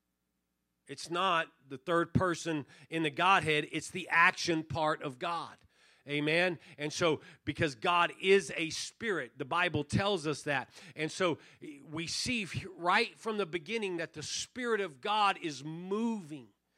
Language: English